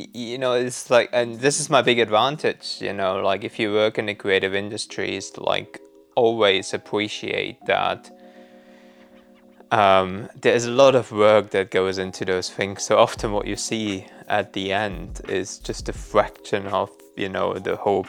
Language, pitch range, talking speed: English, 95-120 Hz, 175 wpm